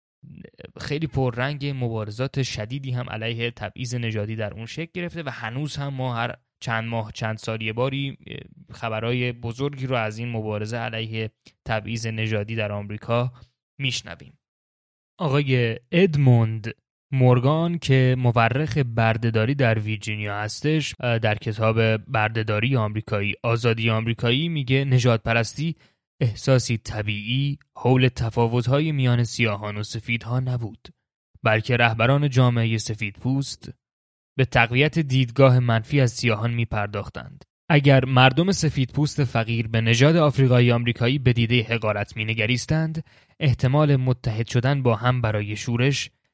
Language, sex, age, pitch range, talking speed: Persian, male, 20-39, 110-135 Hz, 120 wpm